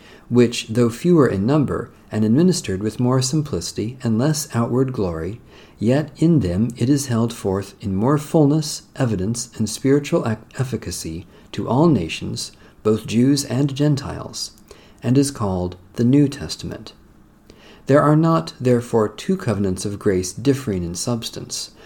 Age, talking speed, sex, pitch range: 50-69, 145 wpm, male, 100-140 Hz